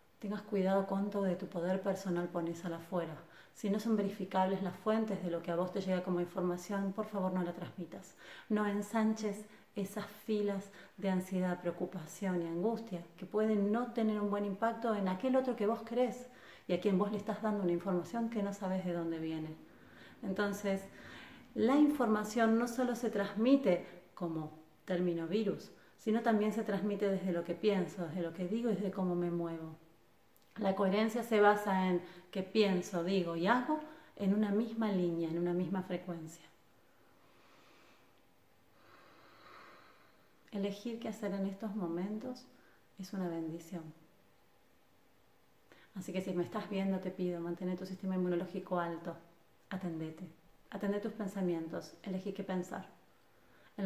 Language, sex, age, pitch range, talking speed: Spanish, female, 30-49, 175-210 Hz, 160 wpm